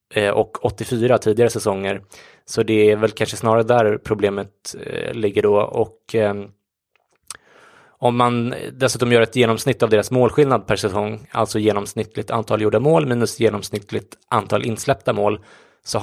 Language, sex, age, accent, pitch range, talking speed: English, male, 20-39, Swedish, 105-120 Hz, 140 wpm